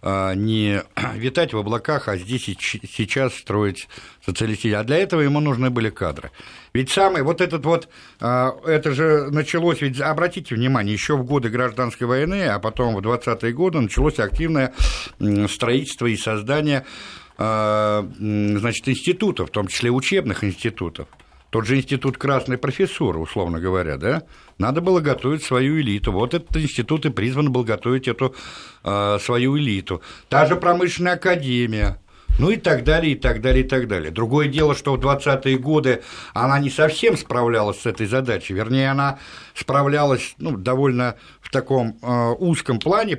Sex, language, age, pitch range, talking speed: male, Russian, 60-79, 110-150 Hz, 155 wpm